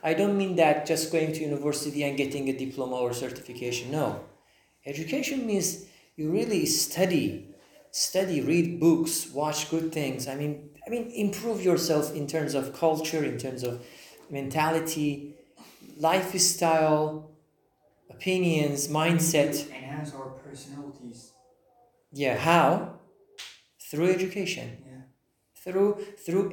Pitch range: 150-195 Hz